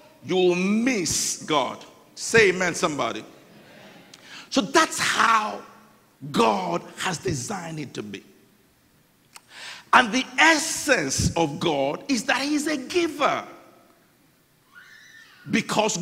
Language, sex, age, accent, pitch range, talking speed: English, male, 50-69, Nigerian, 205-285 Hz, 95 wpm